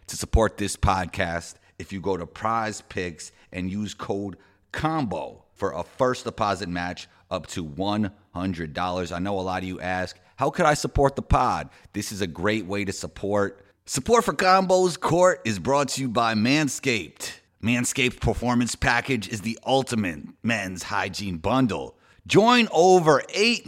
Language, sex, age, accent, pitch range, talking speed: English, male, 30-49, American, 95-145 Hz, 160 wpm